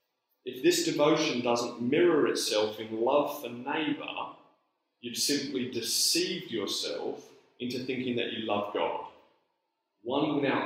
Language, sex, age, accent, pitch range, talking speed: English, male, 30-49, British, 120-195 Hz, 125 wpm